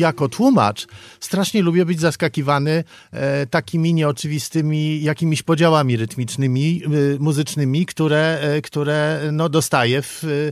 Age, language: 50-69, Polish